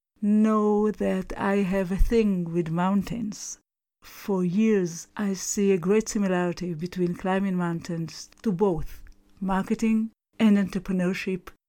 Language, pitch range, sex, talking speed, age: English, 175-205 Hz, female, 120 wpm, 50-69